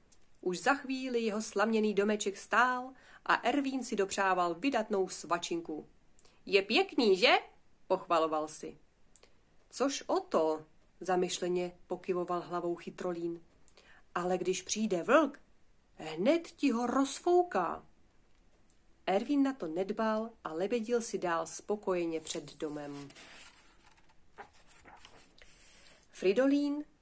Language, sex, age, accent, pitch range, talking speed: Czech, female, 40-59, native, 180-250 Hz, 100 wpm